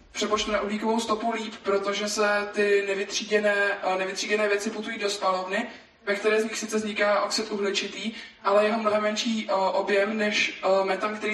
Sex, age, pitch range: male, 20-39, 195-210 Hz